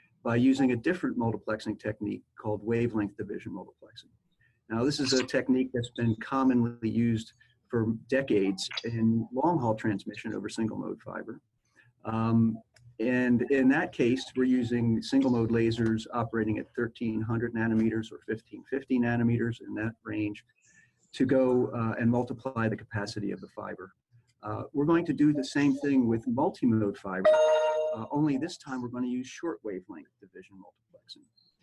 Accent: American